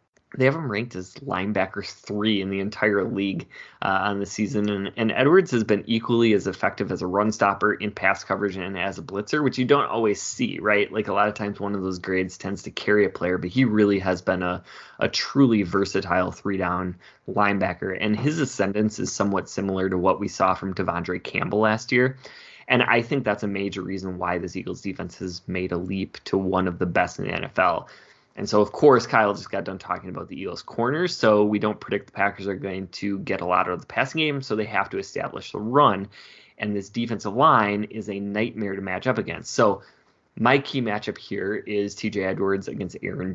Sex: male